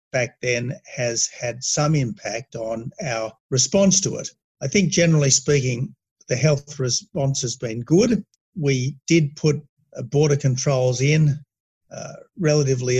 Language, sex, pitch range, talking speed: English, male, 130-150 Hz, 130 wpm